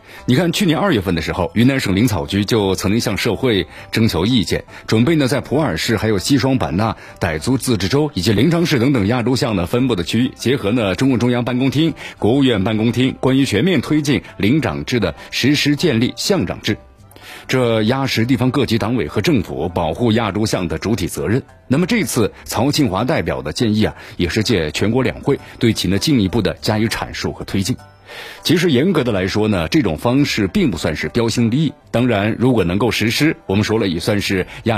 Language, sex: Chinese, male